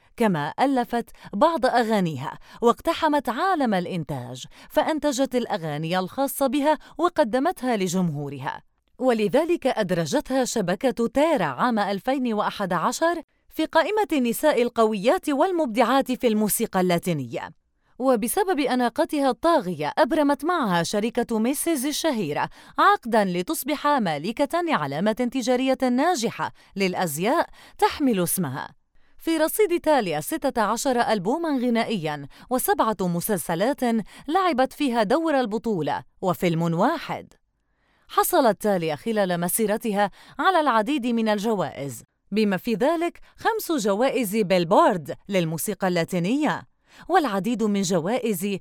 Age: 30-49